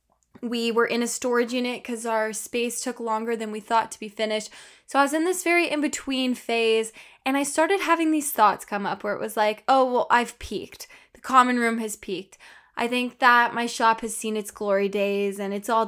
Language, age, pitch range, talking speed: English, 10-29, 215-275 Hz, 225 wpm